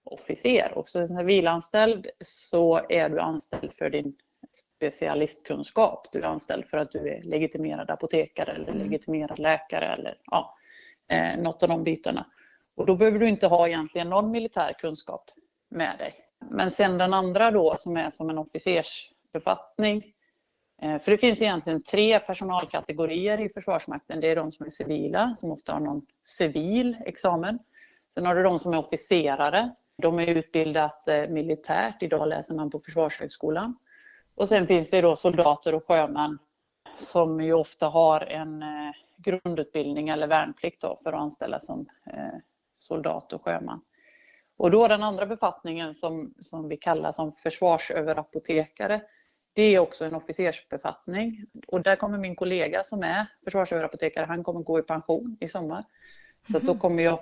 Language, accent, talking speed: Swedish, native, 155 wpm